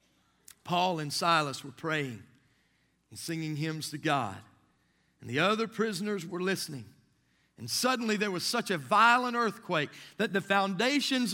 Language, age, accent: English, 40-59, American